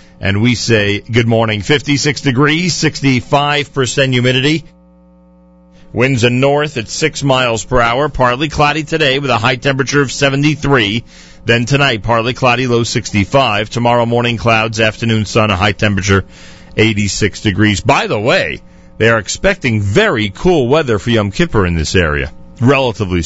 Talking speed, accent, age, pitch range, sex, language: 150 wpm, American, 40-59, 100-135 Hz, male, English